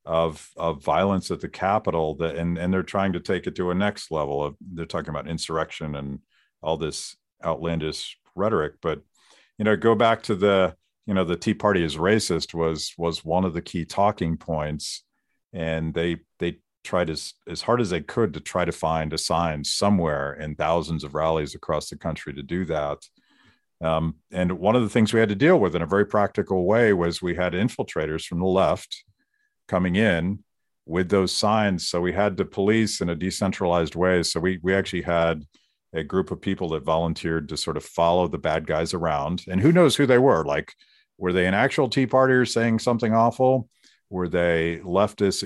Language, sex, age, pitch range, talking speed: English, male, 50-69, 80-100 Hz, 200 wpm